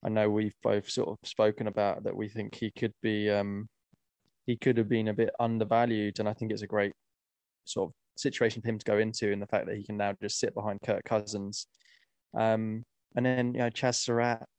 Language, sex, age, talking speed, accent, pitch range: English, male, 20-39, 225 wpm, British, 105-120 Hz